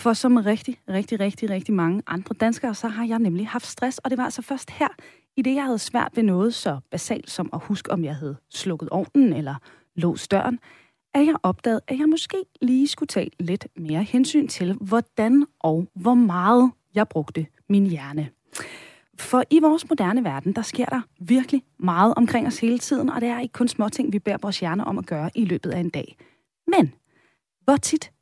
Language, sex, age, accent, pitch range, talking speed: Danish, female, 30-49, native, 180-255 Hz, 210 wpm